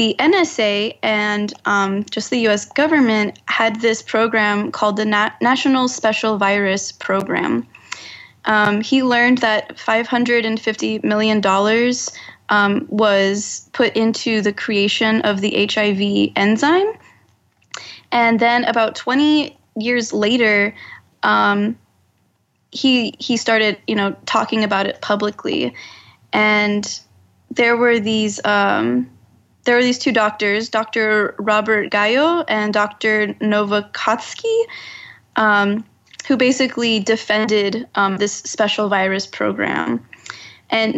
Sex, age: female, 20-39